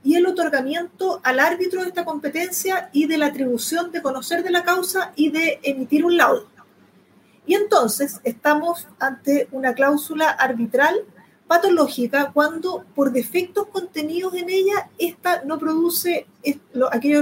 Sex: female